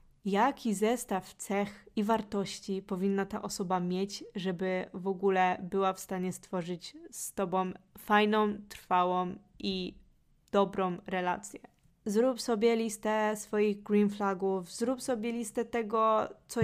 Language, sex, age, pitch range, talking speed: Polish, female, 20-39, 195-220 Hz, 125 wpm